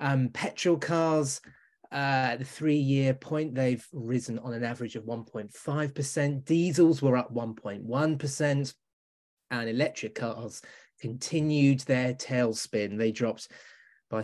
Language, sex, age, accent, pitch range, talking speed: English, male, 20-39, British, 125-170 Hz, 115 wpm